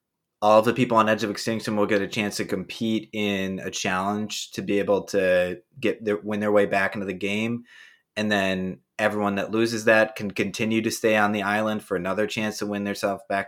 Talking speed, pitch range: 225 wpm, 95-110 Hz